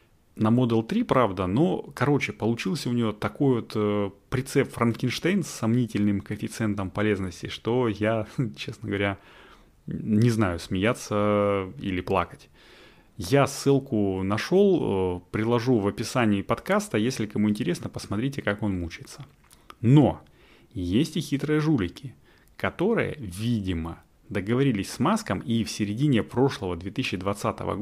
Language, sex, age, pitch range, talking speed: Russian, male, 30-49, 100-130 Hz, 120 wpm